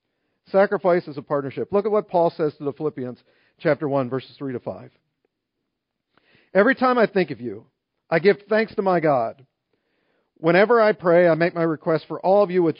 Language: English